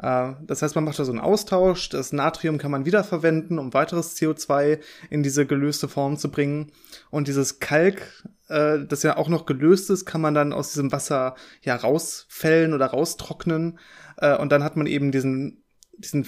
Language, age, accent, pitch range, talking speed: German, 20-39, German, 140-160 Hz, 175 wpm